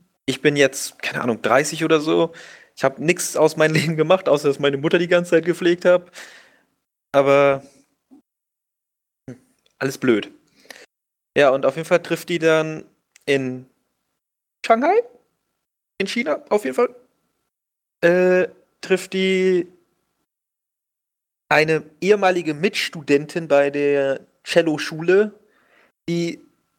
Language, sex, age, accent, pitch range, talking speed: German, male, 30-49, German, 135-175 Hz, 115 wpm